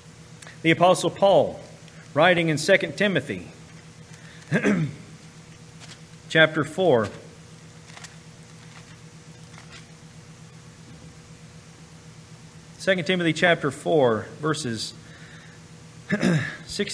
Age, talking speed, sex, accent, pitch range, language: 40-59, 55 wpm, male, American, 150-165 Hz, English